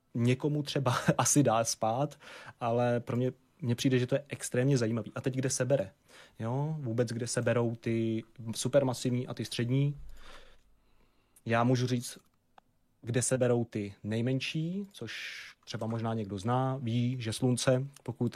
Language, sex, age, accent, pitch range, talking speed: Czech, male, 30-49, native, 115-130 Hz, 155 wpm